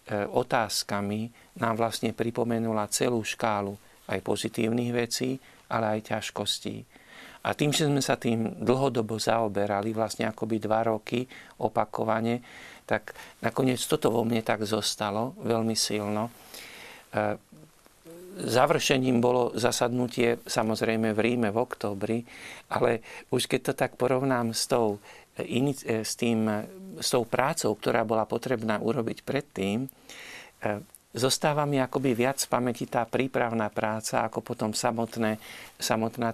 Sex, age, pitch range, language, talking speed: male, 50-69, 110-120 Hz, Slovak, 125 wpm